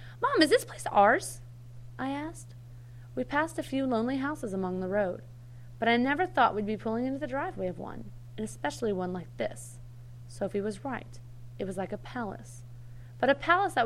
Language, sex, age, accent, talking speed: English, female, 30-49, American, 195 wpm